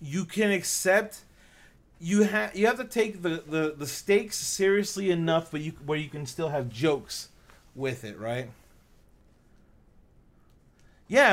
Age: 30-49